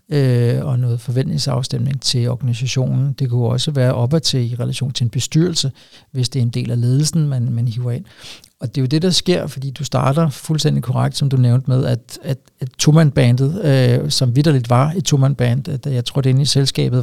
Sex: male